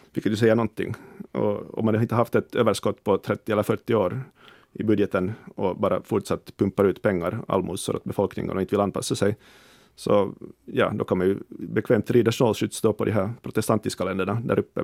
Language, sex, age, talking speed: Swedish, male, 30-49, 200 wpm